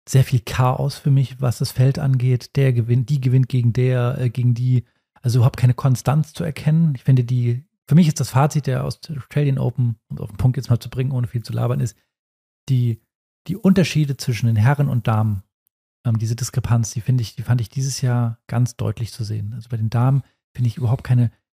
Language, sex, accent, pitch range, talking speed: German, male, German, 120-135 Hz, 225 wpm